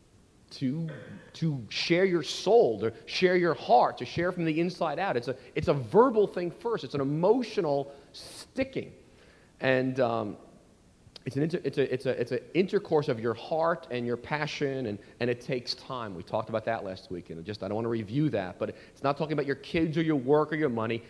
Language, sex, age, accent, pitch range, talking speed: English, male, 40-59, American, 120-170 Hz, 215 wpm